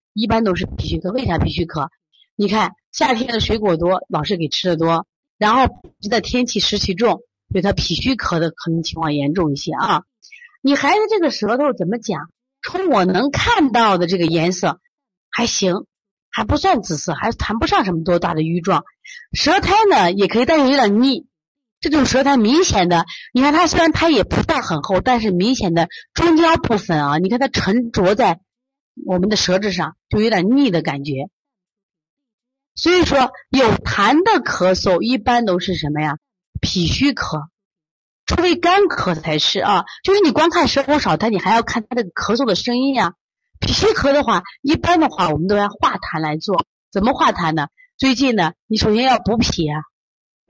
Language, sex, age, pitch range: Chinese, female, 30-49, 175-275 Hz